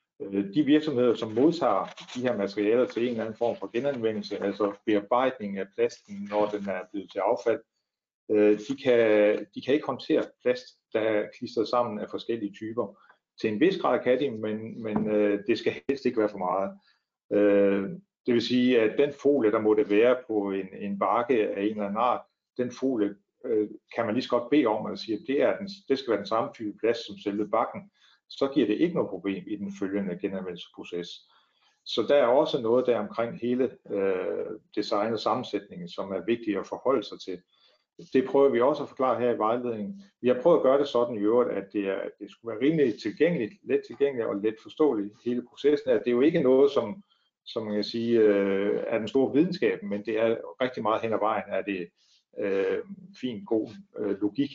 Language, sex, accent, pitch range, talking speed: Danish, male, native, 105-140 Hz, 205 wpm